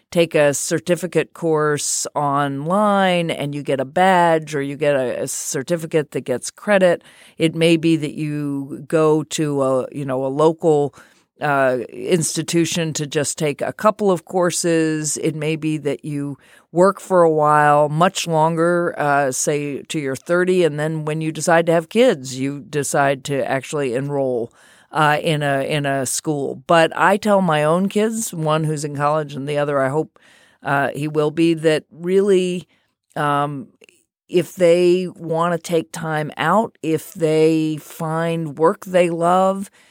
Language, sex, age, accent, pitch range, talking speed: English, female, 40-59, American, 145-175 Hz, 165 wpm